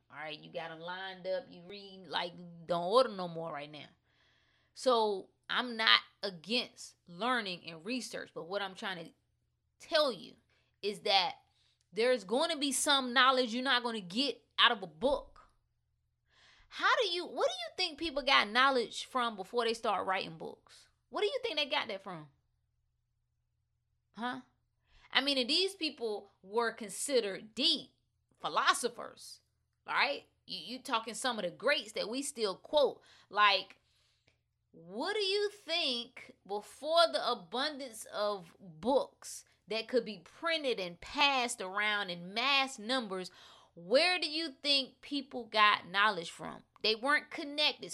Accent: American